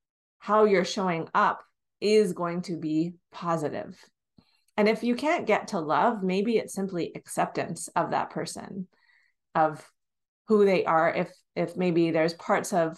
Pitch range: 170-210 Hz